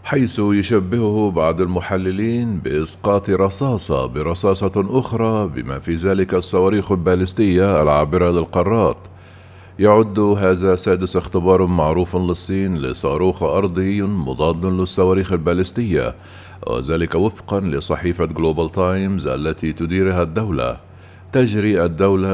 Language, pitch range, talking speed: Arabic, 85-100 Hz, 95 wpm